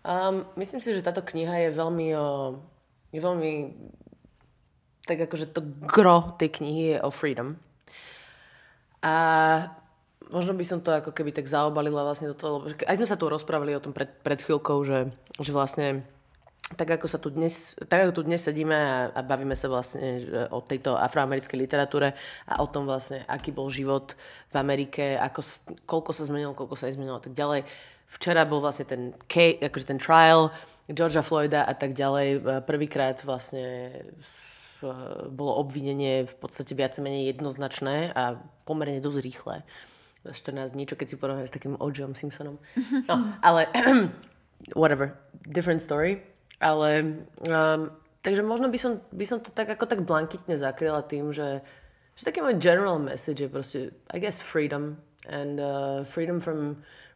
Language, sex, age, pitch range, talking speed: Slovak, female, 20-39, 140-165 Hz, 165 wpm